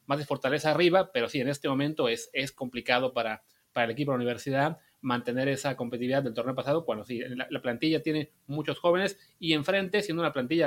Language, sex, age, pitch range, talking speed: Spanish, male, 30-49, 130-170 Hz, 215 wpm